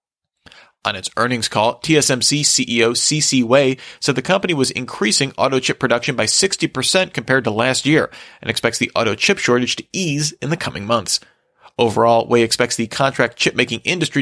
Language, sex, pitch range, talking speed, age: English, male, 115-145 Hz, 165 wpm, 30-49